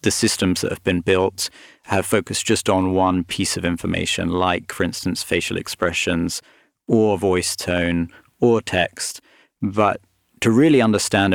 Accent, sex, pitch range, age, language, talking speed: British, male, 90-105 Hz, 30-49, English, 150 wpm